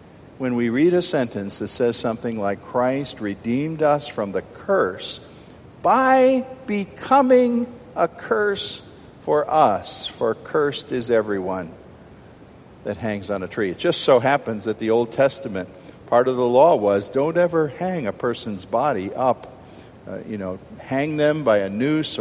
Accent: American